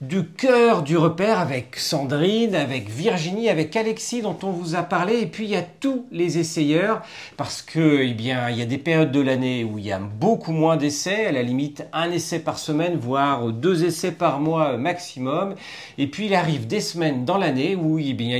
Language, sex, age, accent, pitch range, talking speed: French, male, 40-59, French, 140-195 Hz, 210 wpm